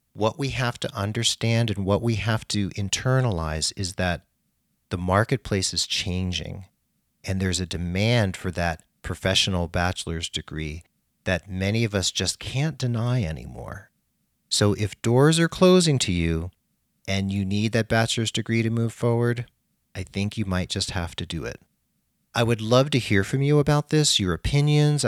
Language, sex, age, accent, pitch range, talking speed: English, male, 40-59, American, 90-130 Hz, 165 wpm